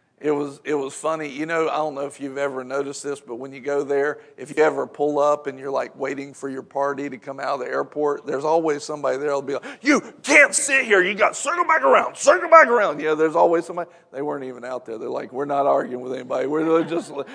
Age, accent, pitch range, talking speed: 50-69, American, 140-180 Hz, 260 wpm